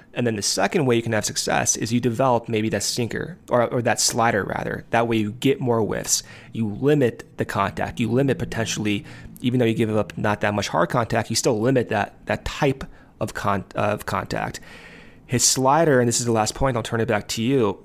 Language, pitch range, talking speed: English, 110-140 Hz, 225 wpm